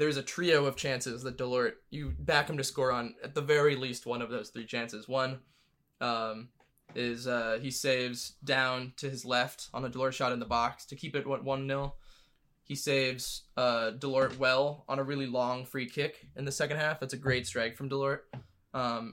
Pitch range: 120-140 Hz